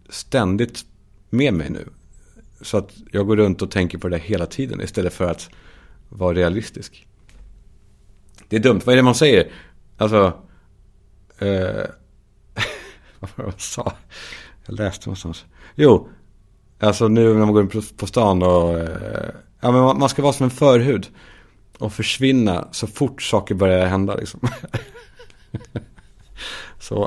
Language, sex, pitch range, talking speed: Swedish, male, 90-110 Hz, 145 wpm